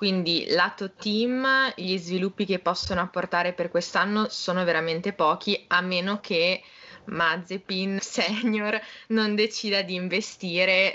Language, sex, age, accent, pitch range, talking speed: Italian, female, 20-39, native, 175-215 Hz, 120 wpm